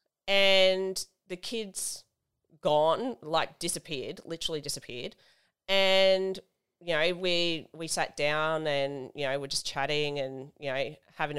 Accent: Australian